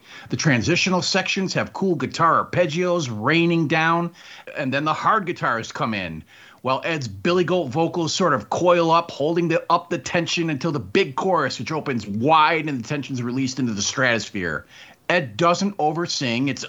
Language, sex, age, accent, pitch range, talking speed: English, male, 40-59, American, 135-180 Hz, 175 wpm